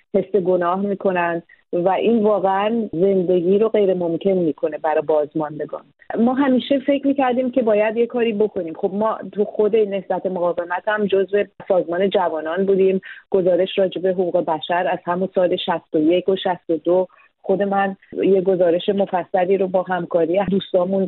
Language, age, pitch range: Persian, 40-59, 180-215 Hz